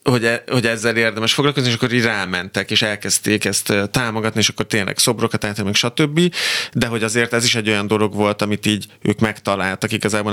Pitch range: 105-125 Hz